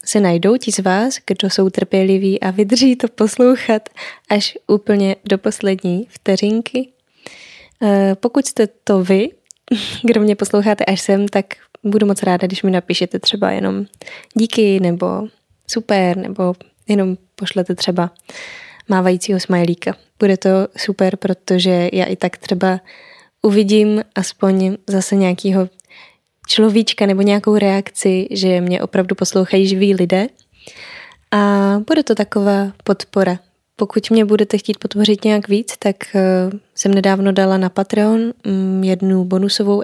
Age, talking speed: 10-29, 130 wpm